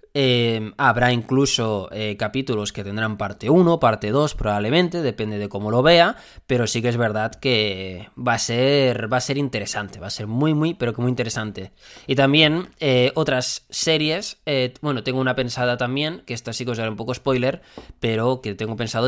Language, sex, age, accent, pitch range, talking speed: Spanish, male, 20-39, Spanish, 110-135 Hz, 200 wpm